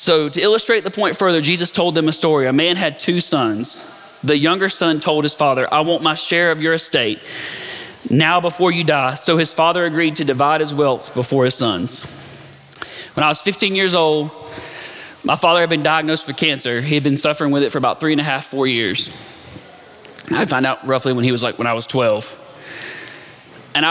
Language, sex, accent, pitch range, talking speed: English, male, American, 135-165 Hz, 210 wpm